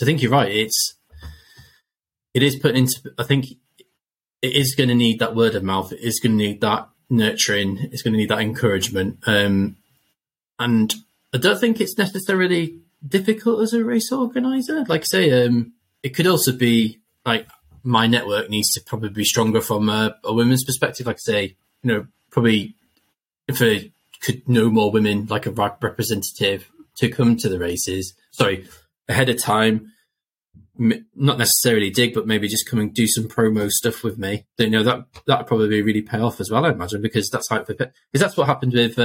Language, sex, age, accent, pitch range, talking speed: English, male, 20-39, British, 105-130 Hz, 200 wpm